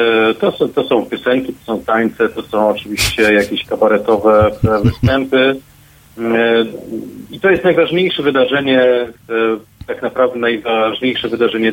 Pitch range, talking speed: 115-135 Hz, 120 wpm